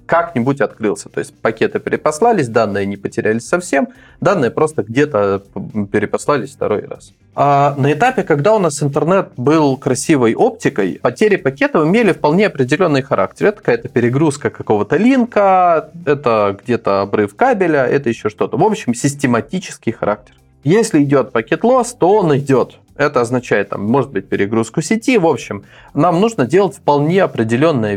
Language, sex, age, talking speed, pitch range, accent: Russian, male, 20-39, 145 wpm, 115-165 Hz, native